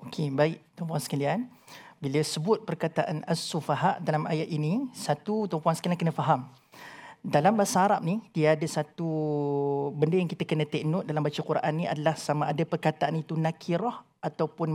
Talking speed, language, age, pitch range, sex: 160 wpm, Malayalam, 40-59, 155-200 Hz, male